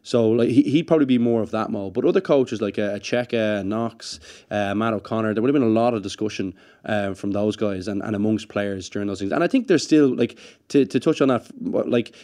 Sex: male